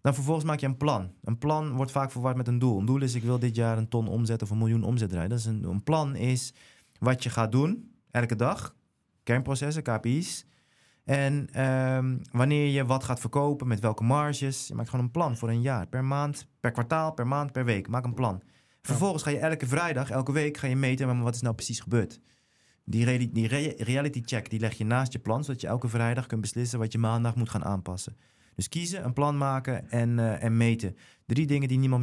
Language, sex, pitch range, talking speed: Dutch, male, 115-135 Hz, 215 wpm